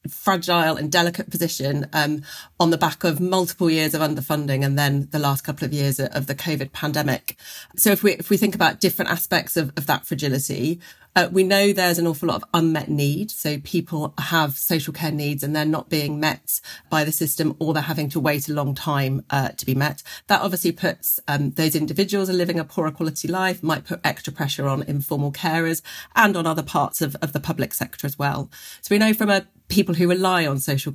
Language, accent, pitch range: English, British, 145-175 Hz